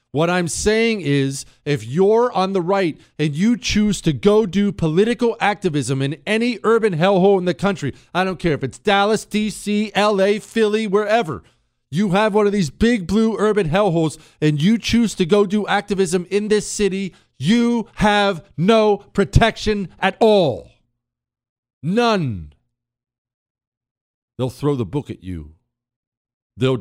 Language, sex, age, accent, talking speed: English, male, 50-69, American, 150 wpm